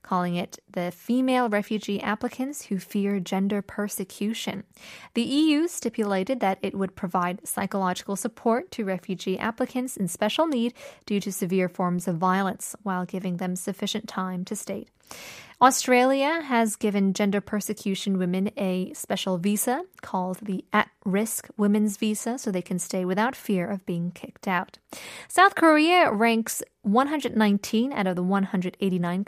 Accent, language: American, Korean